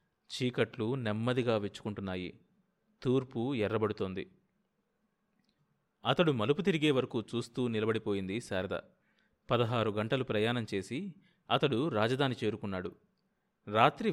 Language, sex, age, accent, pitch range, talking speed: Telugu, male, 30-49, native, 110-160 Hz, 85 wpm